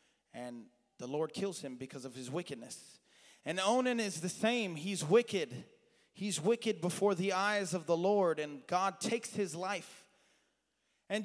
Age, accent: 30-49, American